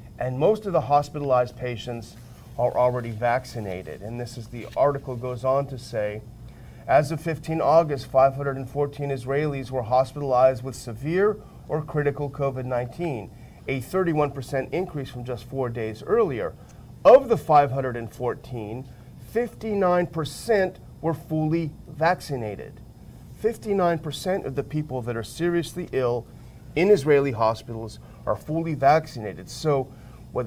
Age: 40-59